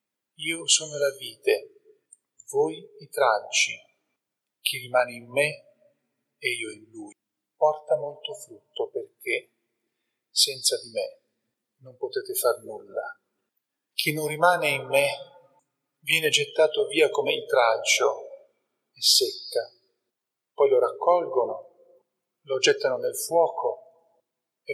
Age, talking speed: 40-59, 115 wpm